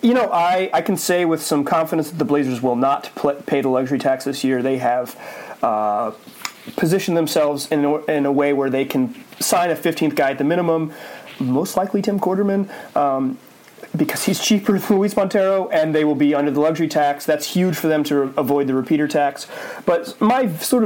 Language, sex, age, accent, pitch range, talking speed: English, male, 30-49, American, 140-185 Hz, 210 wpm